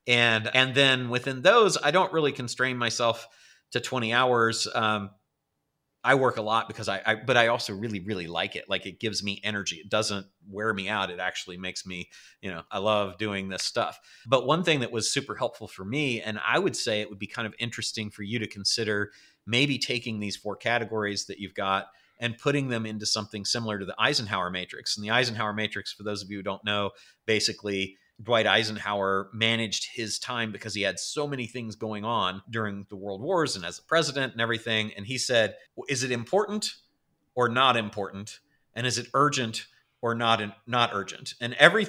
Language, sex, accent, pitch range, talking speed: English, male, American, 105-125 Hz, 205 wpm